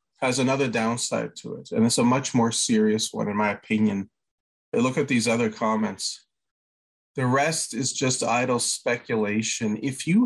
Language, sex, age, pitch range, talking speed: English, male, 30-49, 115-165 Hz, 165 wpm